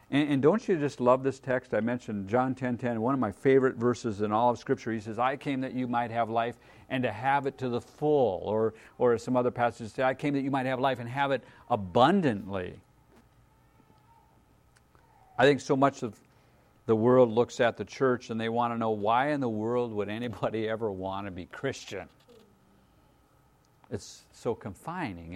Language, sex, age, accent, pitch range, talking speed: English, male, 50-69, American, 105-125 Hz, 200 wpm